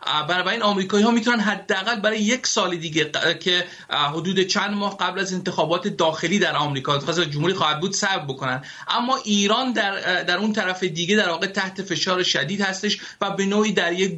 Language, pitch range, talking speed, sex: Persian, 160-195 Hz, 185 wpm, male